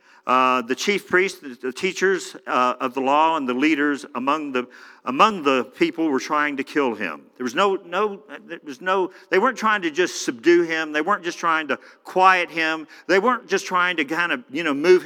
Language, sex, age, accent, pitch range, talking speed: English, male, 50-69, American, 125-175 Hz, 215 wpm